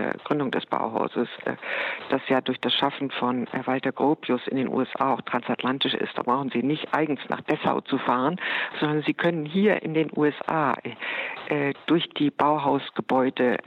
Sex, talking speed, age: female, 160 wpm, 50-69